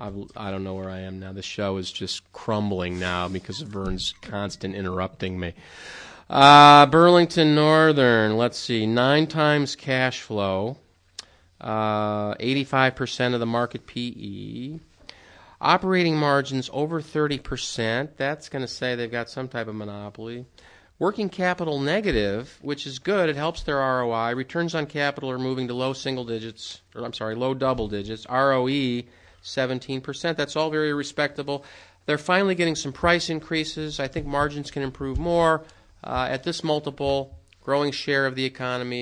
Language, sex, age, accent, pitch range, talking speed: English, male, 30-49, American, 105-145 Hz, 155 wpm